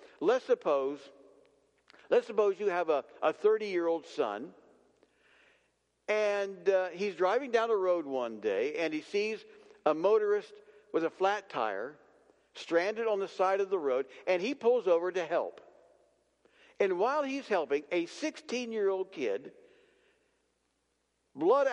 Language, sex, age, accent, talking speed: English, male, 60-79, American, 135 wpm